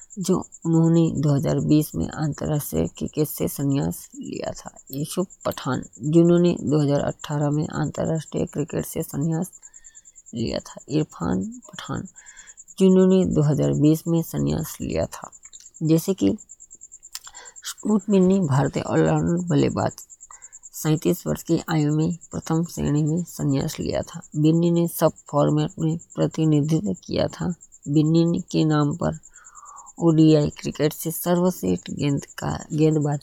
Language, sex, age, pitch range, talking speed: Hindi, female, 20-39, 150-175 Hz, 115 wpm